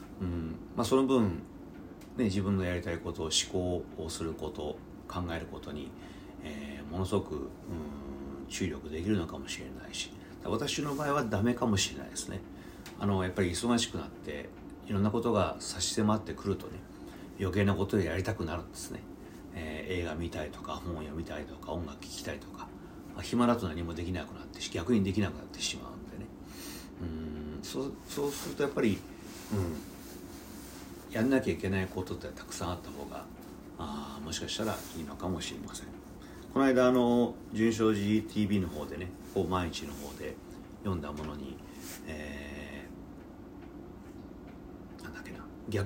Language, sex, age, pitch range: Japanese, male, 40-59, 80-105 Hz